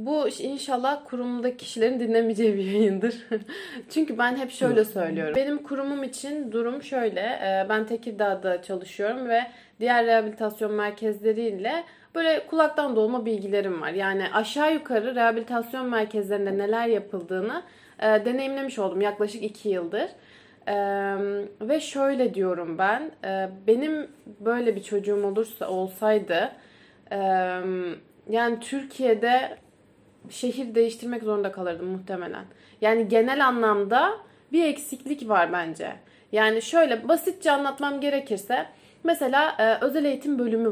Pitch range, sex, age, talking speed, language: 205-255 Hz, female, 30-49, 110 wpm, Turkish